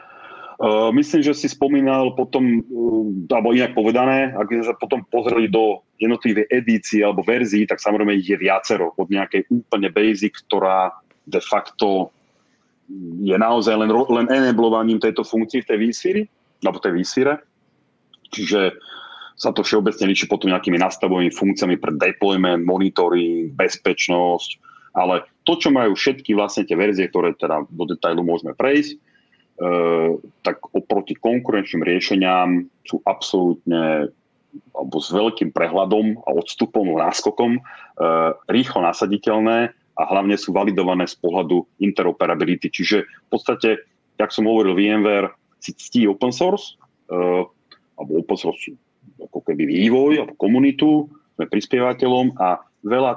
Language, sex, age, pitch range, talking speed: English, male, 30-49, 95-130 Hz, 130 wpm